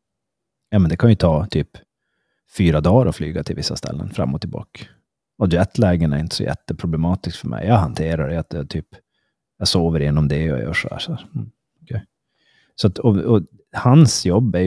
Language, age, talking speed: Swedish, 30-49, 195 wpm